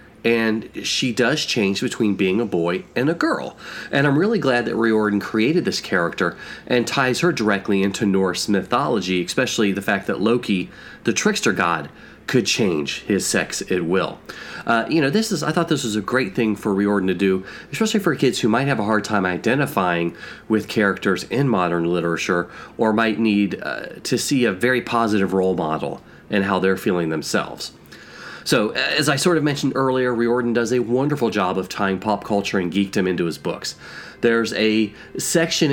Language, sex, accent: English, male, American